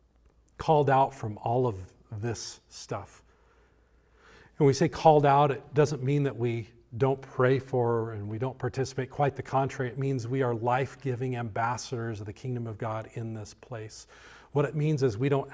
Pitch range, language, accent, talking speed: 105-130 Hz, English, American, 180 wpm